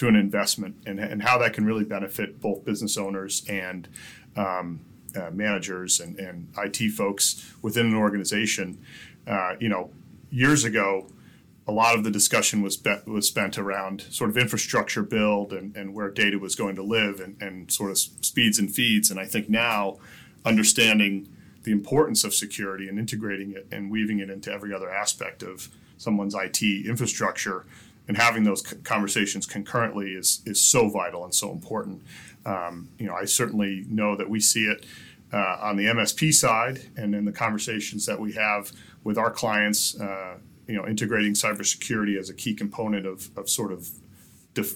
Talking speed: 175 wpm